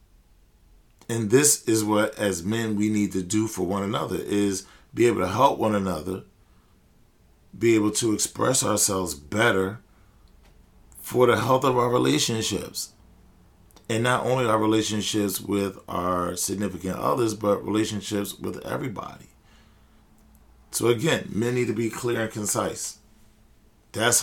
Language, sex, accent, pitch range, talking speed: English, male, American, 95-110 Hz, 135 wpm